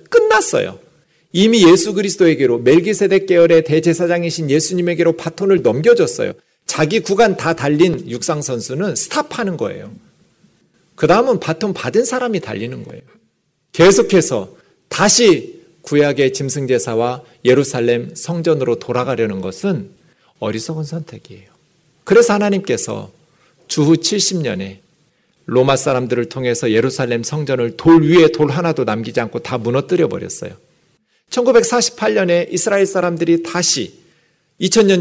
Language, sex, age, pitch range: Korean, male, 40-59, 135-185 Hz